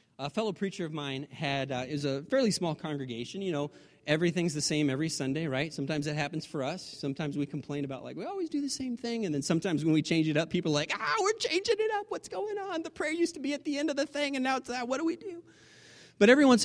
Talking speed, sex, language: 280 wpm, male, English